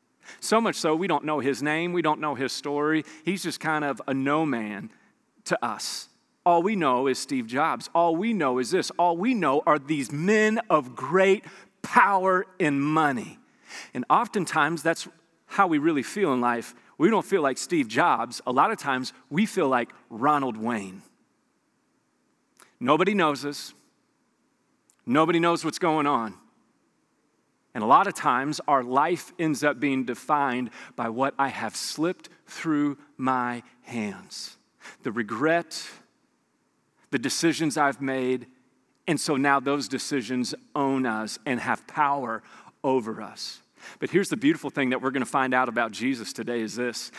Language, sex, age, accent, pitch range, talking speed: English, male, 40-59, American, 130-175 Hz, 165 wpm